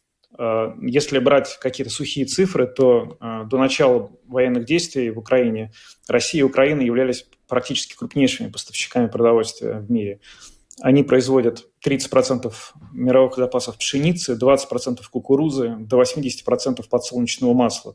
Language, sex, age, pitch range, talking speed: Russian, male, 20-39, 120-135 Hz, 115 wpm